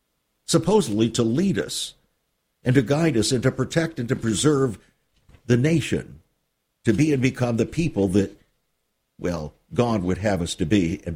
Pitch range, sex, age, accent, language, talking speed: 105-145 Hz, male, 60-79, American, English, 165 wpm